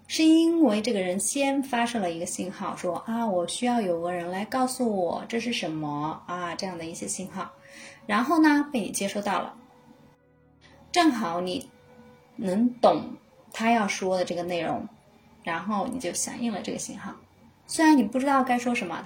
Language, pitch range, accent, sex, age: Chinese, 180-245 Hz, native, female, 20-39